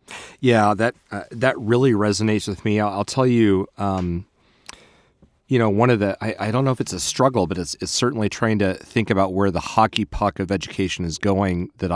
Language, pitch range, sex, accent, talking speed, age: English, 90-110 Hz, male, American, 215 wpm, 30-49